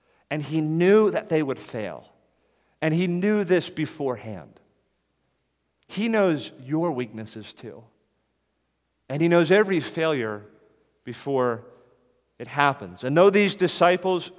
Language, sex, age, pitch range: English, male, 40-59, 115-160 Hz